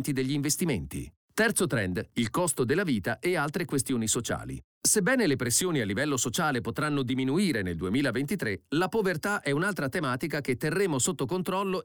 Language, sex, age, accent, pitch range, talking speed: Italian, male, 40-59, native, 120-175 Hz, 155 wpm